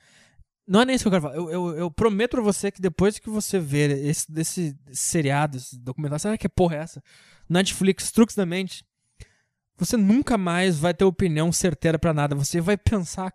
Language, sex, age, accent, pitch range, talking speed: English, male, 20-39, Brazilian, 150-215 Hz, 205 wpm